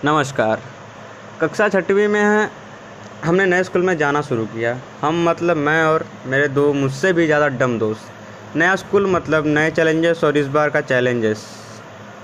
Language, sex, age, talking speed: Hindi, male, 20-39, 160 wpm